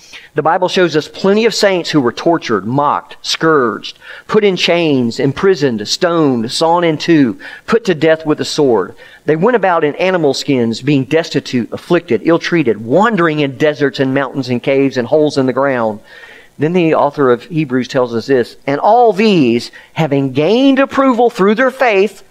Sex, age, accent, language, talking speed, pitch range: male, 40-59, American, English, 175 wpm, 135-195 Hz